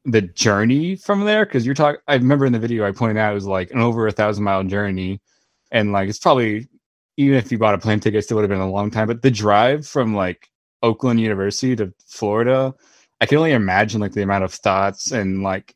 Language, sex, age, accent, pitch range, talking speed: English, male, 20-39, American, 100-130 Hz, 240 wpm